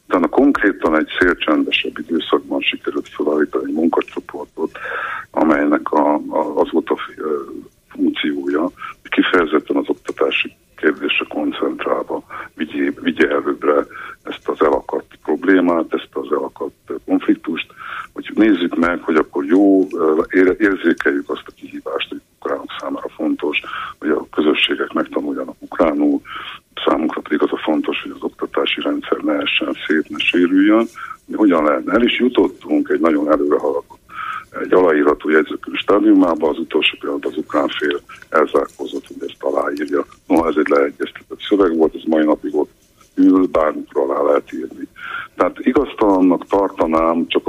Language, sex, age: Hungarian, male, 50-69